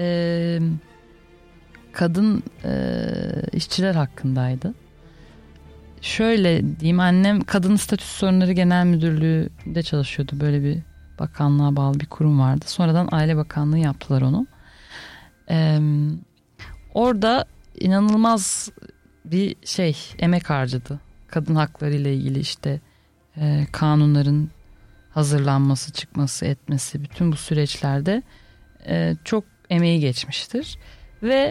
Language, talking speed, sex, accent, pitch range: Turkish, 95 wpm, female, native, 140-175 Hz